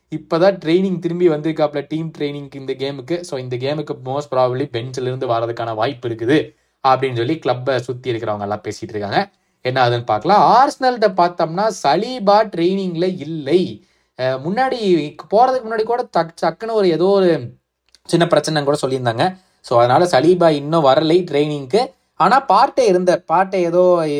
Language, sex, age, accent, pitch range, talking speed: Tamil, male, 20-39, native, 130-190 Hz, 65 wpm